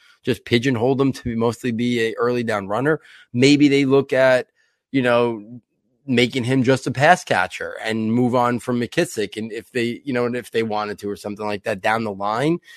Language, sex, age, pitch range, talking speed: English, male, 20-39, 110-140 Hz, 205 wpm